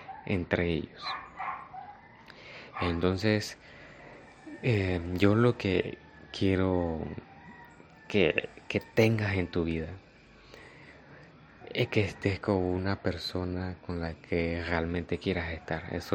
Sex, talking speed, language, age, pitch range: male, 100 wpm, Spanish, 30-49, 90-105 Hz